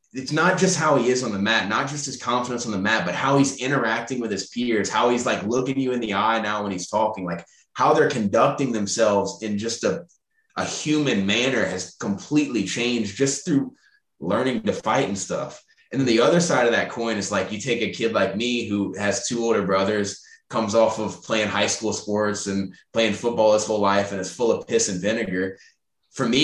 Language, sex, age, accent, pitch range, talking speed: English, male, 20-39, American, 100-130 Hz, 225 wpm